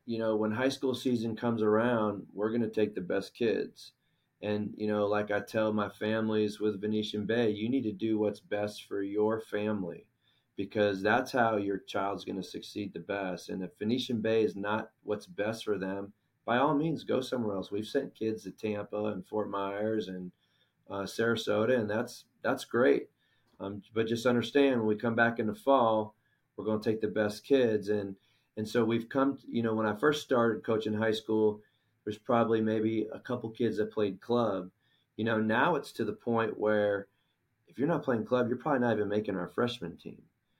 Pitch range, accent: 105-120 Hz, American